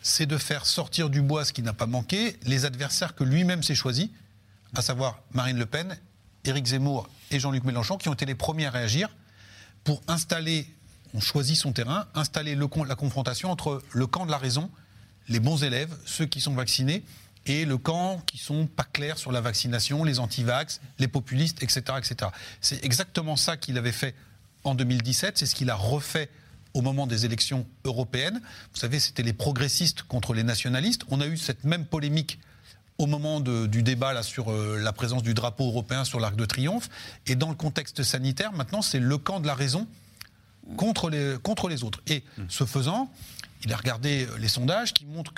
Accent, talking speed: French, 200 wpm